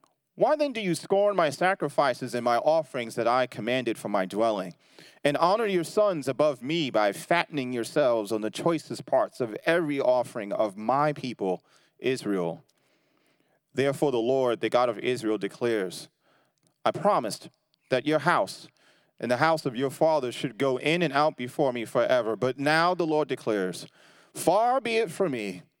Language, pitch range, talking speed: English, 120-160 Hz, 170 wpm